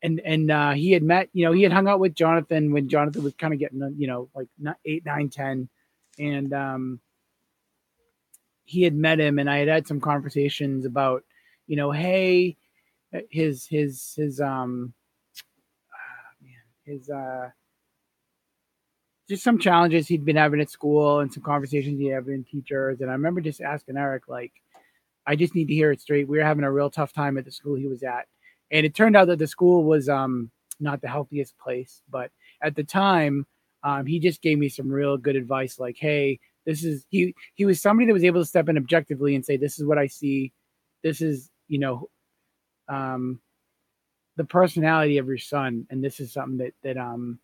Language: English